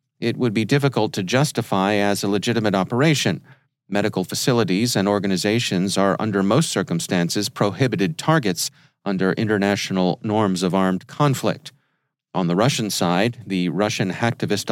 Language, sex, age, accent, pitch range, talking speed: English, male, 40-59, American, 100-130 Hz, 135 wpm